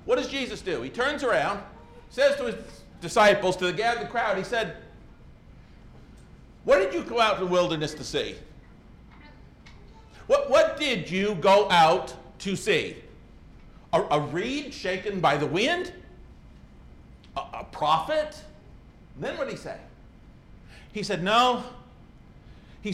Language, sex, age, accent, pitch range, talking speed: English, male, 50-69, American, 180-240 Hz, 140 wpm